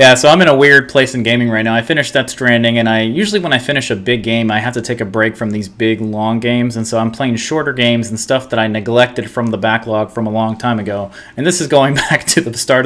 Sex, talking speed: male, 290 wpm